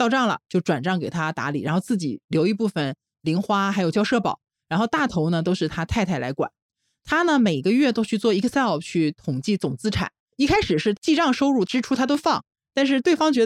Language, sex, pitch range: Chinese, male, 165-260 Hz